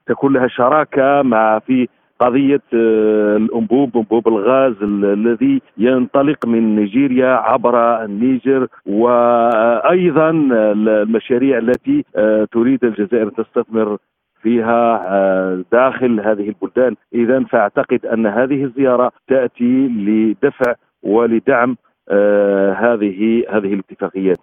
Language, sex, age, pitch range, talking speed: Arabic, male, 50-69, 110-150 Hz, 90 wpm